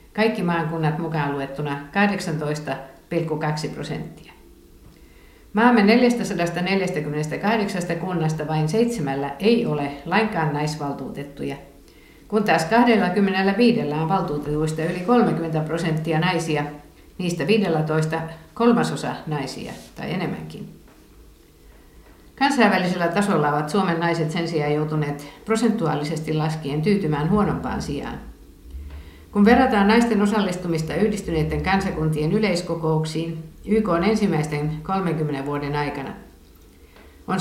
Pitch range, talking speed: 150-200 Hz, 90 wpm